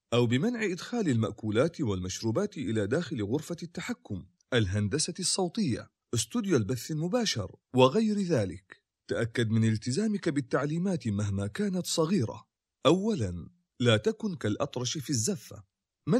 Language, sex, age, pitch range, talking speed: Arabic, male, 40-59, 110-175 Hz, 110 wpm